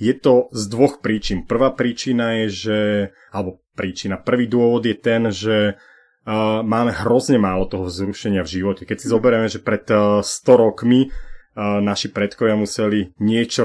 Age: 30-49